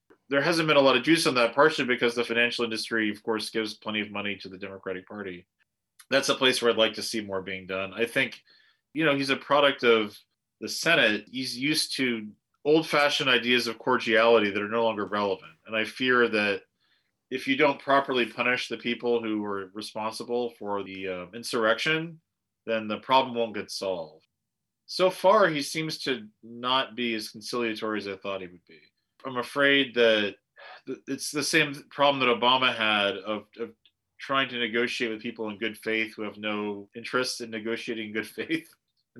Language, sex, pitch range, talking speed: English, male, 105-130 Hz, 190 wpm